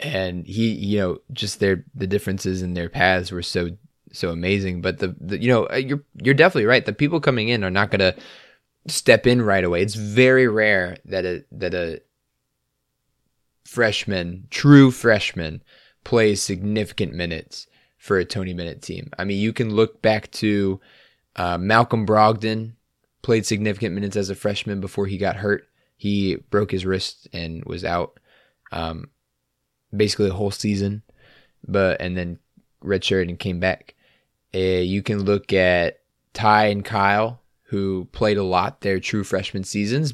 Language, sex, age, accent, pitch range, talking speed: English, male, 20-39, American, 90-105 Hz, 160 wpm